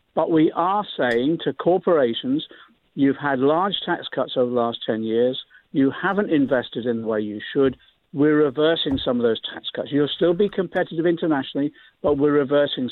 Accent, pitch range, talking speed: British, 130-180 Hz, 180 wpm